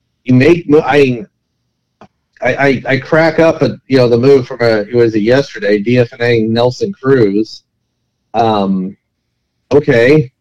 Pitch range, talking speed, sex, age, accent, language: 125-160 Hz, 135 wpm, male, 40-59, American, English